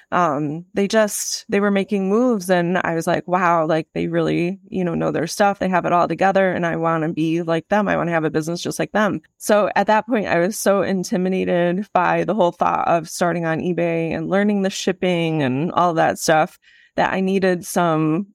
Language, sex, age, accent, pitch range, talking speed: English, female, 20-39, American, 165-195 Hz, 225 wpm